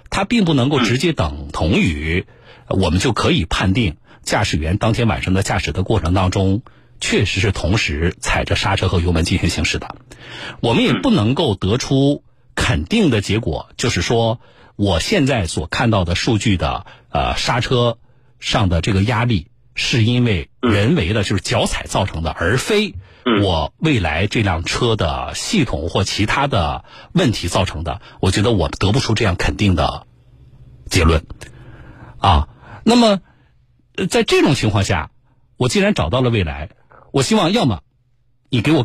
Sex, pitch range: male, 95-125 Hz